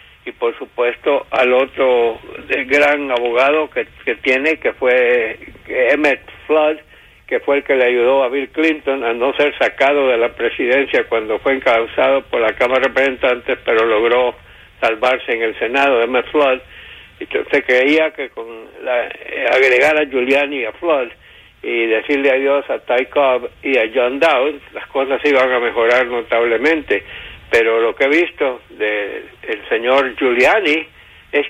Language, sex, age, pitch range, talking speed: English, male, 60-79, 125-150 Hz, 160 wpm